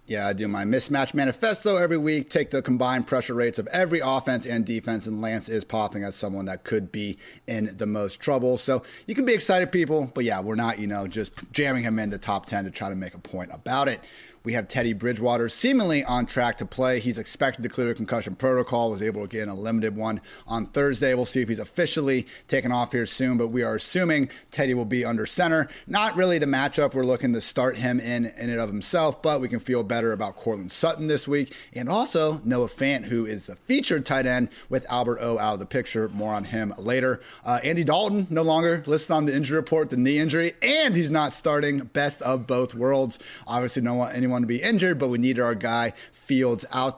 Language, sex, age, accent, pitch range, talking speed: English, male, 30-49, American, 115-145 Hz, 230 wpm